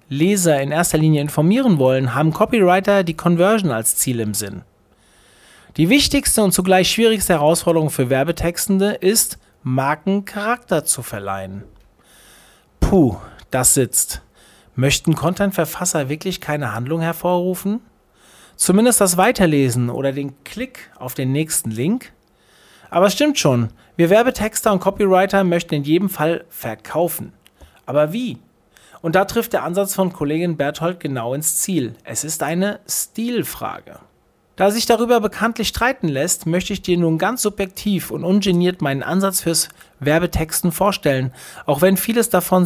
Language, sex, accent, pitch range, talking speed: German, male, German, 140-195 Hz, 140 wpm